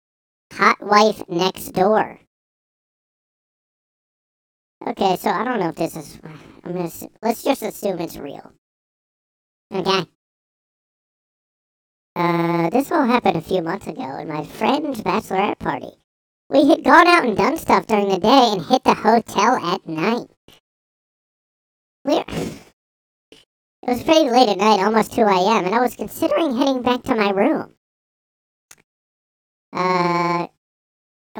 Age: 40-59